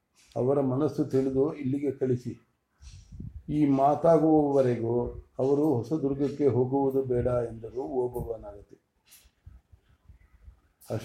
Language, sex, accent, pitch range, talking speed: English, male, Indian, 120-145 Hz, 80 wpm